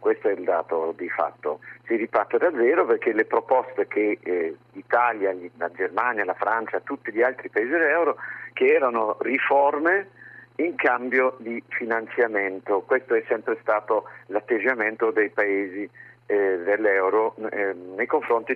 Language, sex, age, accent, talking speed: Italian, male, 50-69, native, 140 wpm